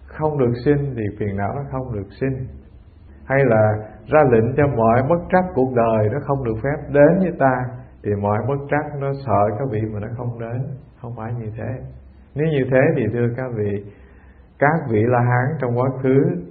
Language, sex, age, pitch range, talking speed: English, male, 50-69, 105-140 Hz, 205 wpm